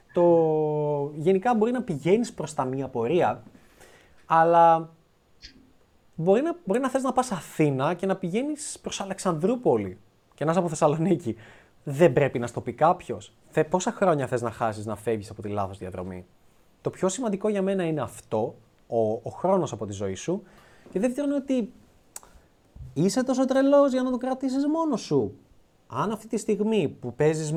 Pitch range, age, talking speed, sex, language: 125-195 Hz, 20-39, 170 wpm, male, Greek